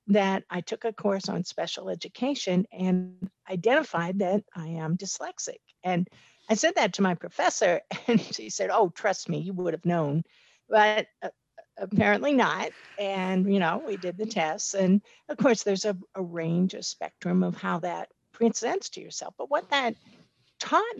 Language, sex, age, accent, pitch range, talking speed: English, female, 60-79, American, 180-225 Hz, 175 wpm